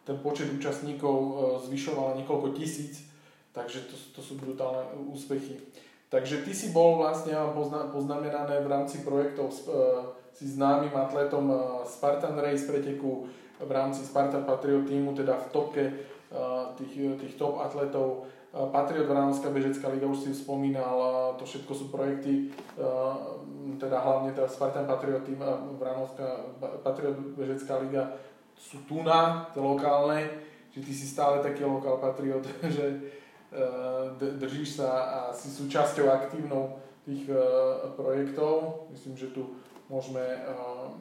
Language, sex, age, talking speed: Slovak, male, 20-39, 130 wpm